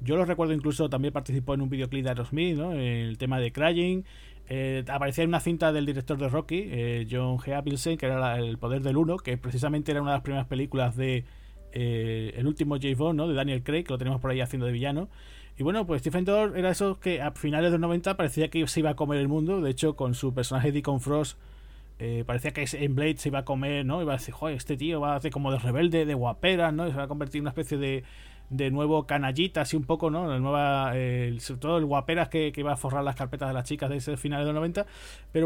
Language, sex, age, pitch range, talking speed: Spanish, male, 20-39, 130-155 Hz, 260 wpm